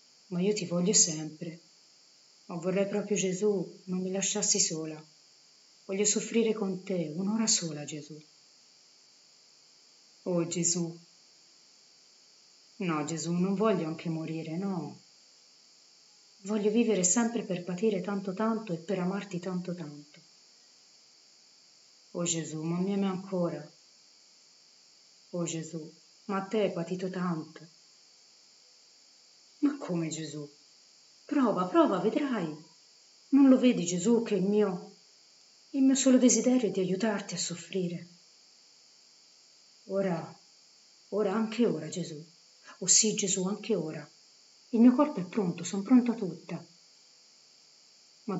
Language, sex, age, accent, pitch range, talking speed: Italian, female, 30-49, native, 165-210 Hz, 120 wpm